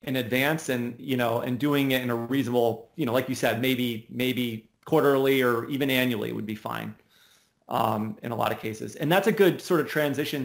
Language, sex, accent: English, male, American